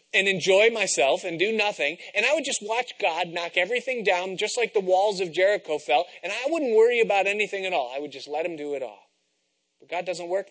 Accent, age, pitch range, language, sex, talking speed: American, 30-49, 150-200 Hz, English, male, 240 wpm